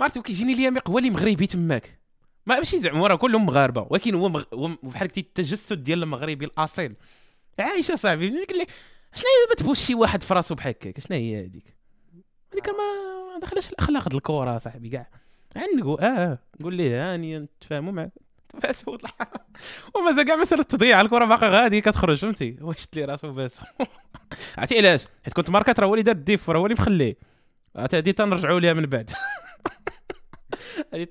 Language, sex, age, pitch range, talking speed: Arabic, male, 20-39, 140-225 Hz, 170 wpm